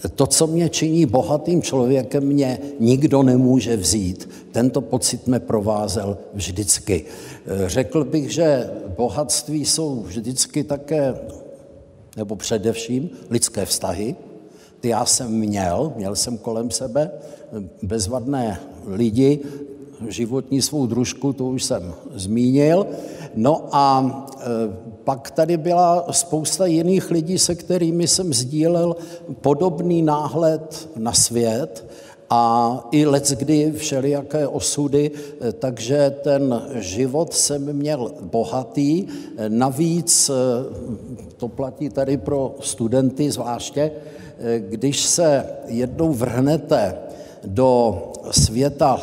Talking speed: 100 wpm